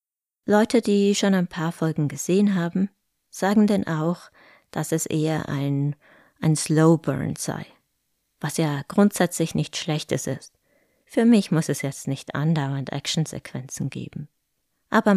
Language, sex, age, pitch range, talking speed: German, female, 20-39, 145-195 Hz, 135 wpm